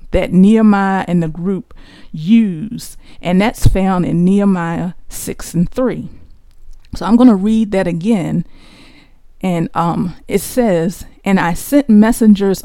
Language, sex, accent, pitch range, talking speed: English, female, American, 175-230 Hz, 135 wpm